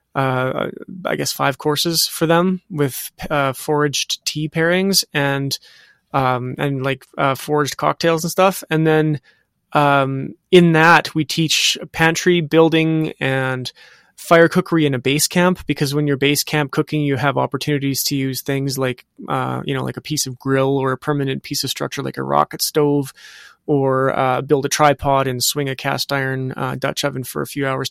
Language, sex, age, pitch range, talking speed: English, male, 20-39, 135-155 Hz, 185 wpm